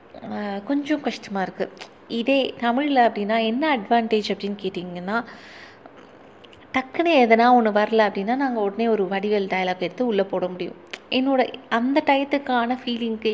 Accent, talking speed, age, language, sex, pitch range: native, 125 wpm, 20-39, Tamil, female, 205-250 Hz